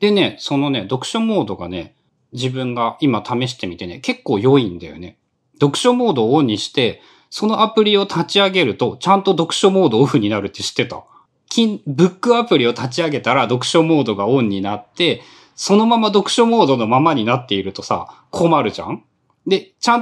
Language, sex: Japanese, male